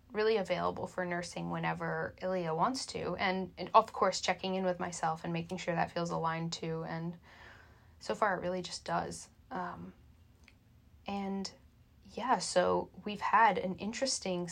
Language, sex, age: English, female, 10-29